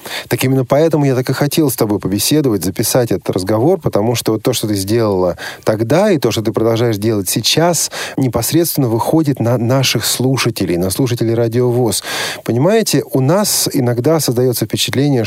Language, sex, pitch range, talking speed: Russian, male, 110-145 Hz, 160 wpm